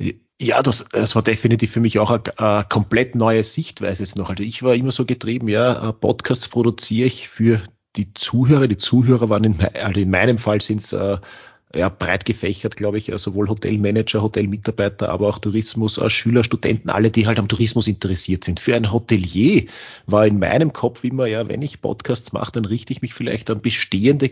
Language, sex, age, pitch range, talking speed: German, male, 40-59, 105-130 Hz, 190 wpm